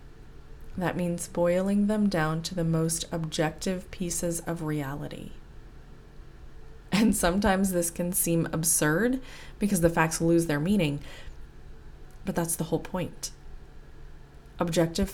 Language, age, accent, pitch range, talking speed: English, 20-39, American, 160-190 Hz, 120 wpm